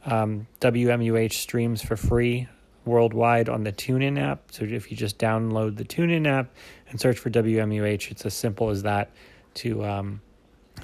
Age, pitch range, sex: 30-49, 110-125 Hz, male